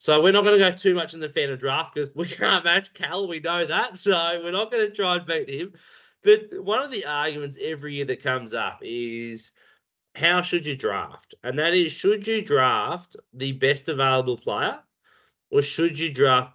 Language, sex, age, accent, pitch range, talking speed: English, male, 30-49, Australian, 135-210 Hz, 215 wpm